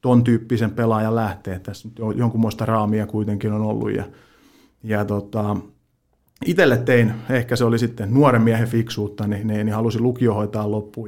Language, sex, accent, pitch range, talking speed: Finnish, male, native, 105-120 Hz, 150 wpm